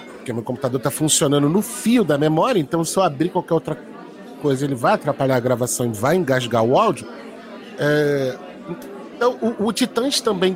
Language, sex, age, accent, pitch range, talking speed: Portuguese, male, 40-59, Brazilian, 150-220 Hz, 170 wpm